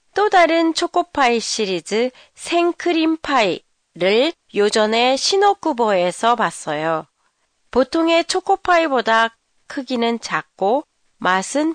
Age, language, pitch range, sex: 30-49, Japanese, 195-305 Hz, female